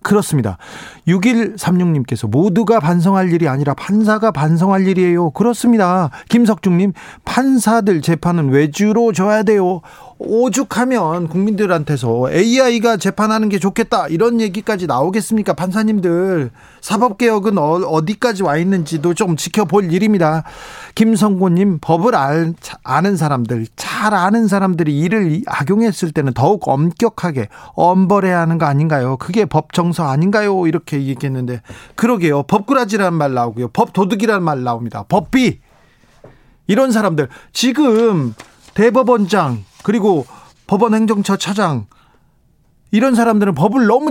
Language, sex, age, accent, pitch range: Korean, male, 40-59, native, 155-225 Hz